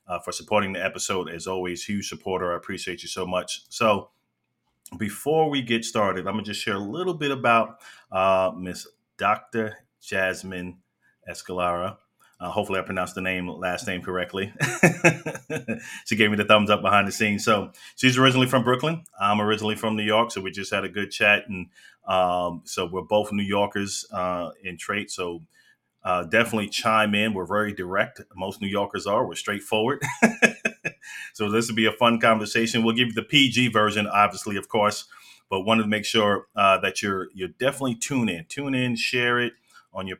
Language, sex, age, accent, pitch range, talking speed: English, male, 30-49, American, 95-115 Hz, 185 wpm